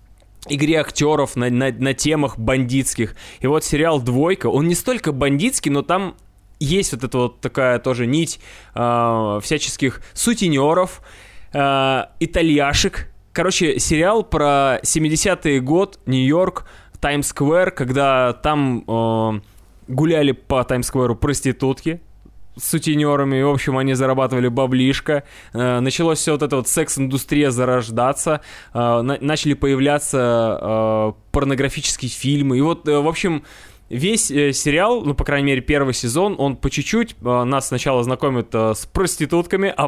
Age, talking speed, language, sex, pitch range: 20-39, 125 wpm, Russian, male, 125-155 Hz